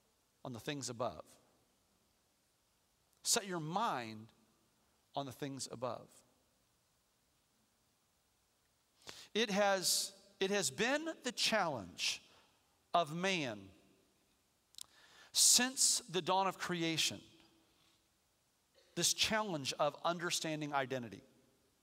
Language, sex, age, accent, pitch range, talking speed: English, male, 50-69, American, 165-215 Hz, 80 wpm